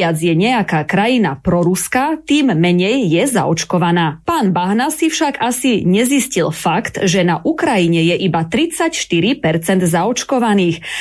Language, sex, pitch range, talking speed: Slovak, female, 175-255 Hz, 120 wpm